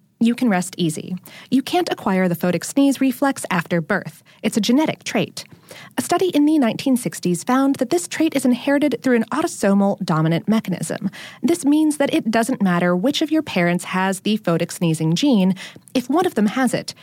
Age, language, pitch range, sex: 30-49, English, 180-270 Hz, female